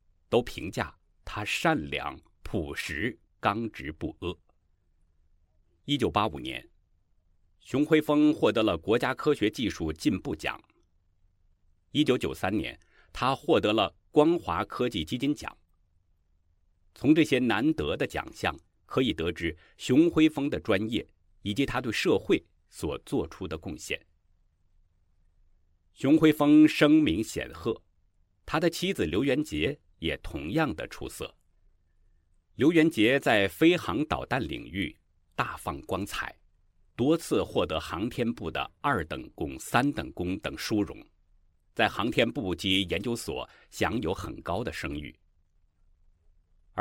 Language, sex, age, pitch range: Chinese, male, 50-69, 85-120 Hz